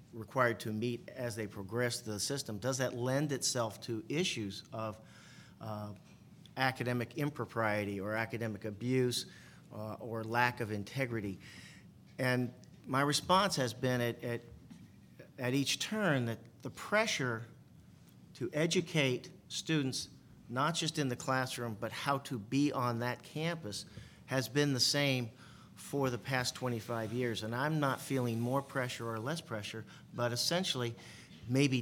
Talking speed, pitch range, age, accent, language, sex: 140 wpm, 115-140 Hz, 50-69, American, English, male